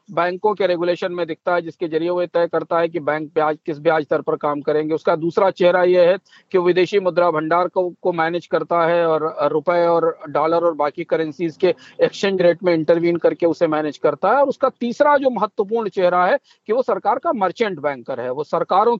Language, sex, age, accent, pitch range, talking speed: Hindi, male, 50-69, native, 165-220 Hz, 210 wpm